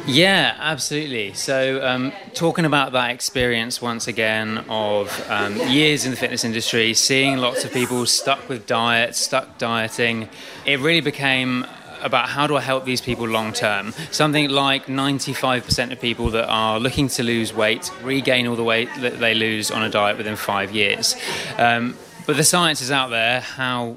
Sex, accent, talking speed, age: male, British, 175 wpm, 20-39